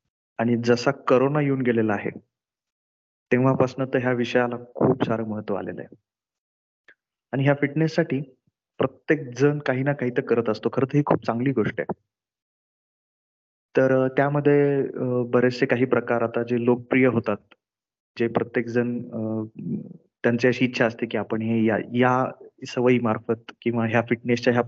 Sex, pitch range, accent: male, 110-130 Hz, native